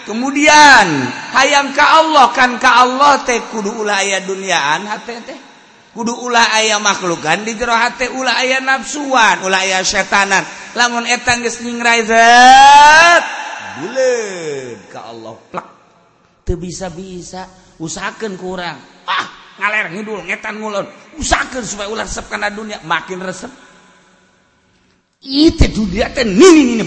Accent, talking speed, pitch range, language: native, 115 wpm, 185-265 Hz, Indonesian